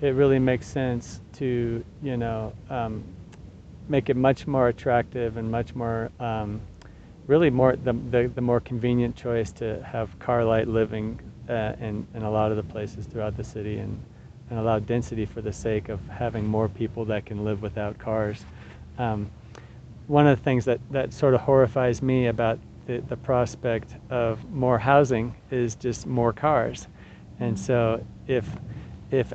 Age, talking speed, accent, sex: 40-59, 170 wpm, American, male